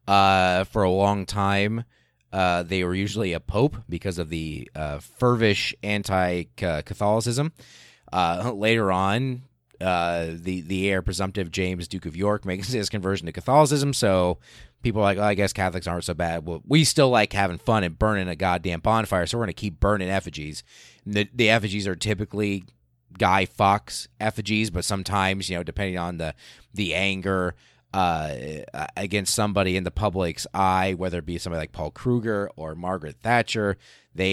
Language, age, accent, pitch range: English, 30-49, American, 85-105 Hz